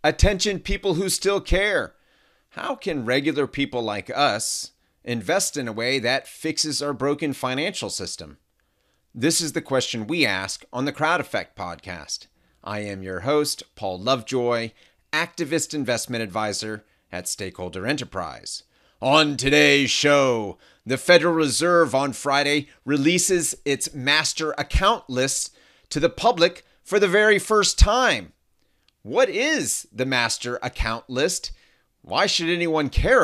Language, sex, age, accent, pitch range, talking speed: English, male, 30-49, American, 125-175 Hz, 135 wpm